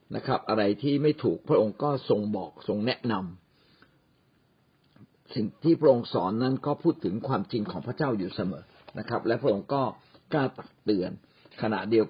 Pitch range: 110-150 Hz